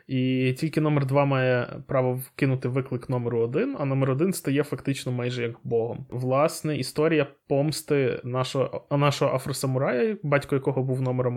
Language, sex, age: Ukrainian, male, 20-39